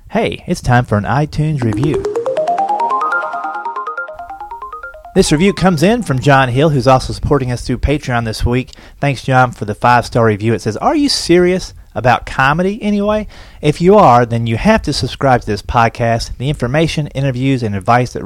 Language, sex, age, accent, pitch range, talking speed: English, male, 30-49, American, 110-155 Hz, 175 wpm